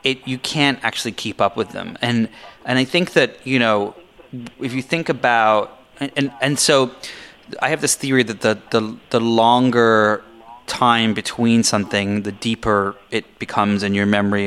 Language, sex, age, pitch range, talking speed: English, male, 30-49, 105-130 Hz, 170 wpm